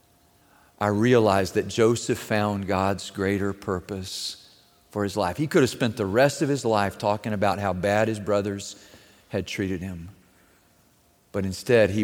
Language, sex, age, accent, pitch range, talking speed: English, male, 40-59, American, 105-145 Hz, 160 wpm